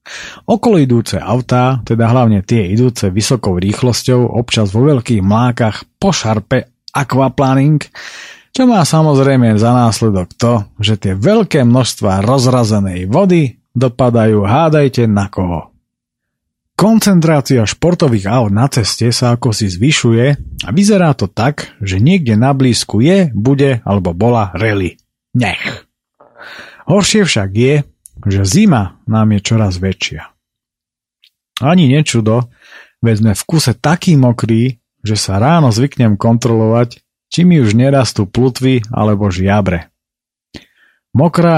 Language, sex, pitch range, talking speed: Slovak, male, 110-140 Hz, 120 wpm